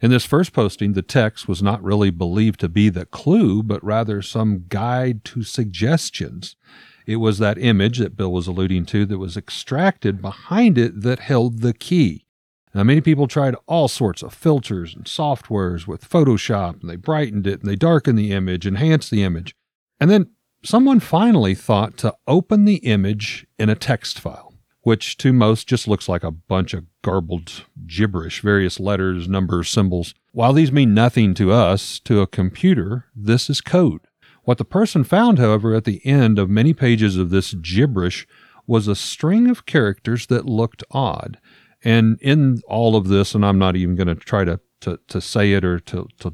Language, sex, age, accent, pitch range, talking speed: English, male, 50-69, American, 95-130 Hz, 185 wpm